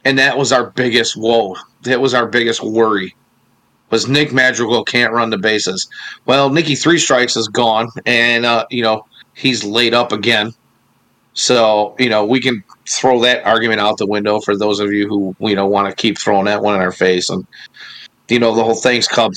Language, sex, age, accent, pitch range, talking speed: English, male, 40-59, American, 115-140 Hz, 205 wpm